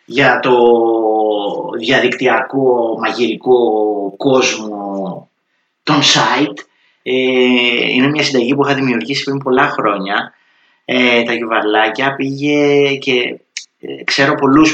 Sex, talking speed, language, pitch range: male, 90 wpm, Greek, 100-135 Hz